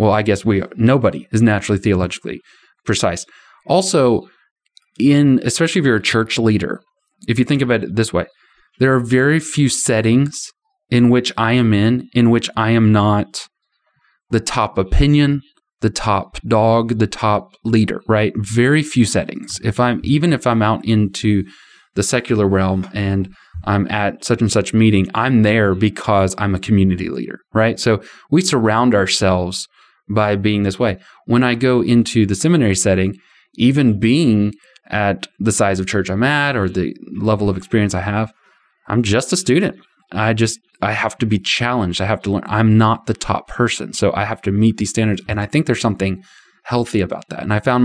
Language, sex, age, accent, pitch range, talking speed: English, male, 20-39, American, 100-120 Hz, 185 wpm